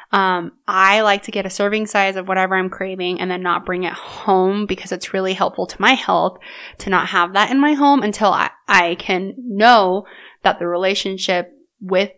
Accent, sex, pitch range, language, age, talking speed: American, female, 180-215 Hz, English, 20-39, 200 wpm